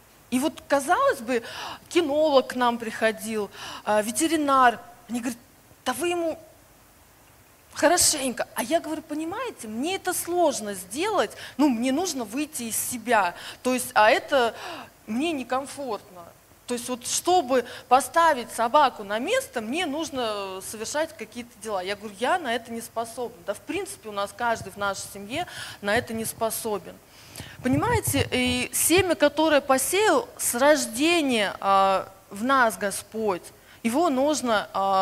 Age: 20-39